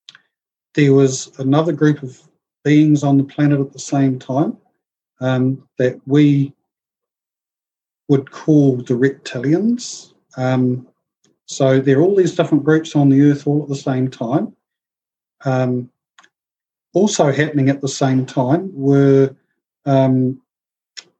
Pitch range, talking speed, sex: 130-145 Hz, 125 wpm, male